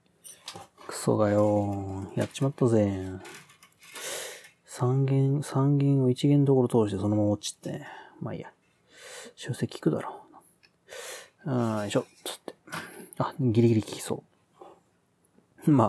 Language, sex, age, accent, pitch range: Japanese, male, 40-59, native, 110-170 Hz